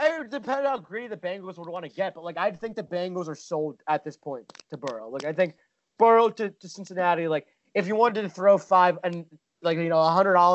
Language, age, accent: English, 30-49, American